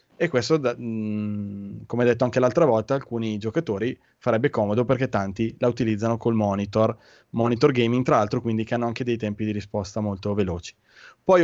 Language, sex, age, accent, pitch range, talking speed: Italian, male, 20-39, native, 110-130 Hz, 185 wpm